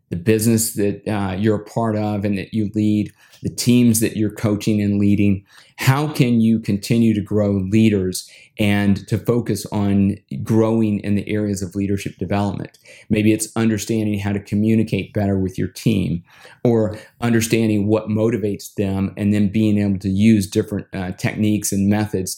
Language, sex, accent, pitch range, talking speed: English, male, American, 100-110 Hz, 170 wpm